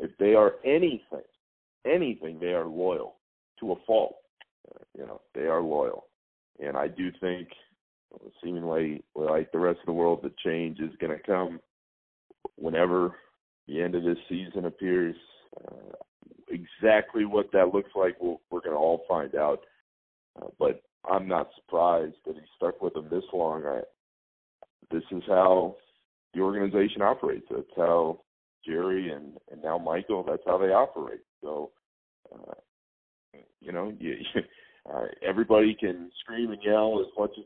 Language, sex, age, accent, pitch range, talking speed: English, male, 40-59, American, 85-120 Hz, 155 wpm